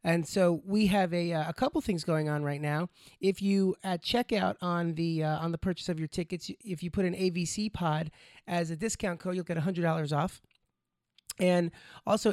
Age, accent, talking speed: 30-49, American, 205 wpm